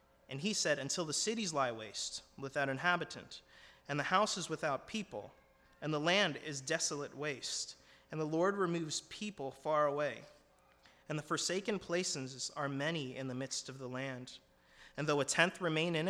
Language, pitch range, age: English, 125-165 Hz, 30-49